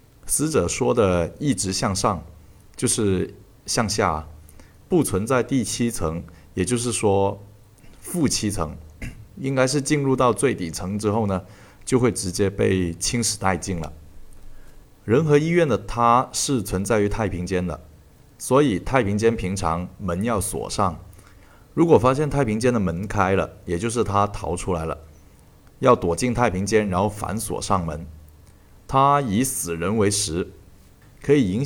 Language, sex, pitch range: Chinese, male, 90-115 Hz